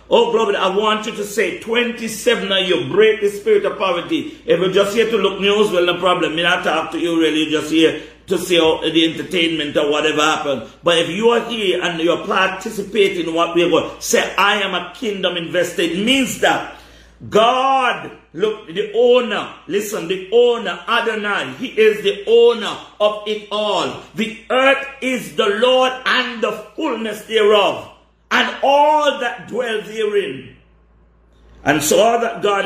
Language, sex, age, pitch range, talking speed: English, male, 50-69, 185-255 Hz, 180 wpm